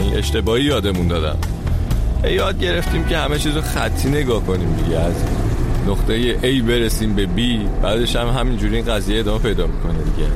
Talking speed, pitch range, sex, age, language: 170 wpm, 85-125 Hz, male, 30-49, Persian